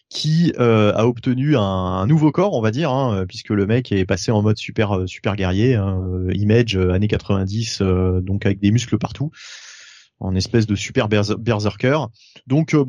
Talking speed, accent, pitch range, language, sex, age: 180 wpm, French, 105-130 Hz, French, male, 30-49